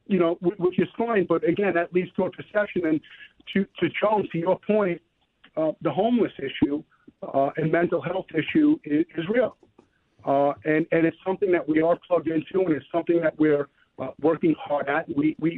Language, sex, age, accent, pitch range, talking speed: English, male, 50-69, American, 160-200 Hz, 200 wpm